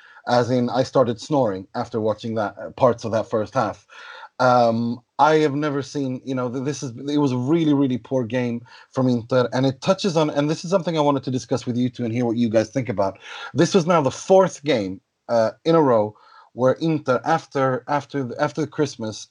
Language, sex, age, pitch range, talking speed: English, male, 30-49, 115-150 Hz, 220 wpm